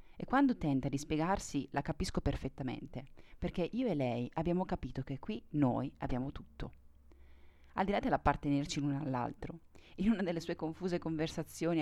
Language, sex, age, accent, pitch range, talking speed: Italian, female, 30-49, native, 130-185 Hz, 155 wpm